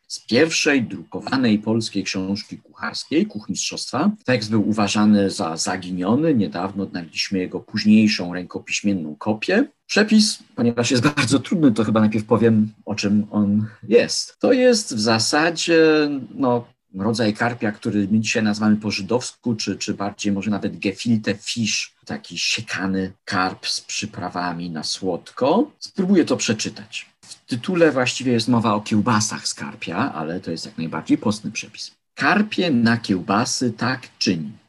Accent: native